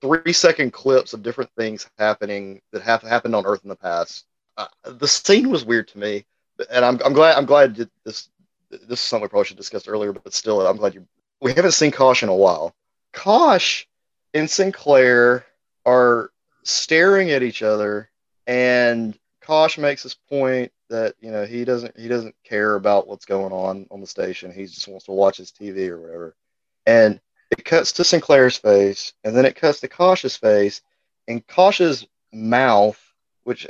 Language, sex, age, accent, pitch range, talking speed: English, male, 30-49, American, 105-140 Hz, 185 wpm